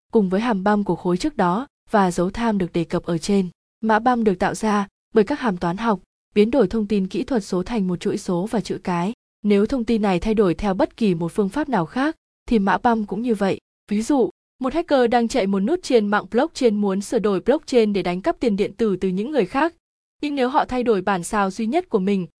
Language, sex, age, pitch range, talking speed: Vietnamese, female, 20-39, 190-240 Hz, 255 wpm